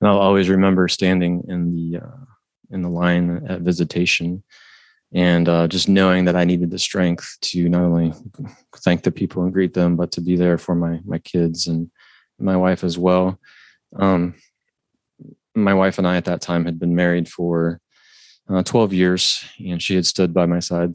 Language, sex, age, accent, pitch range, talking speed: English, male, 20-39, American, 85-95 Hz, 185 wpm